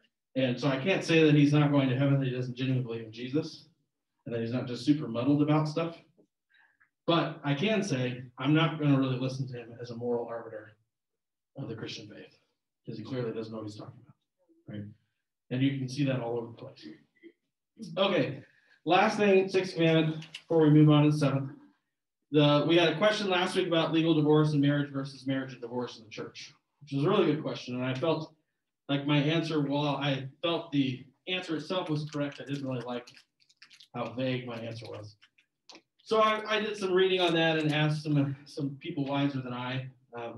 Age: 40-59